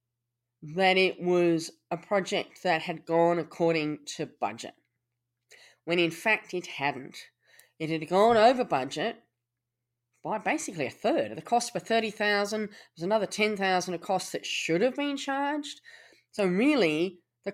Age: 30-49